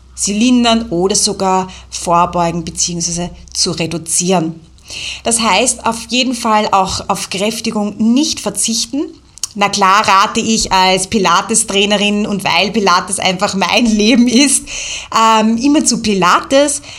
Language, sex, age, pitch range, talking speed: German, female, 30-49, 180-230 Hz, 120 wpm